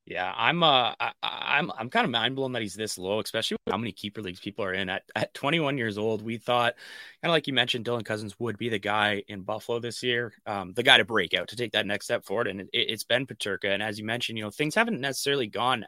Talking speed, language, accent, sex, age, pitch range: 270 wpm, English, American, male, 20-39, 105-125 Hz